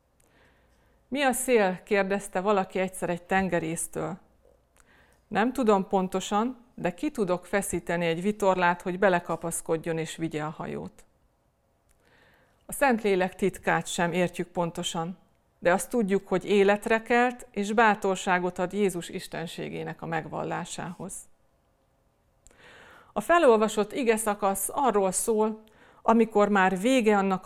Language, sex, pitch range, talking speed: Hungarian, female, 175-215 Hz, 110 wpm